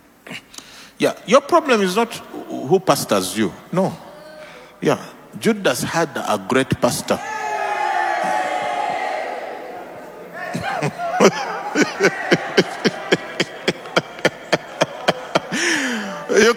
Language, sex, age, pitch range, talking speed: English, male, 50-69, 150-245 Hz, 60 wpm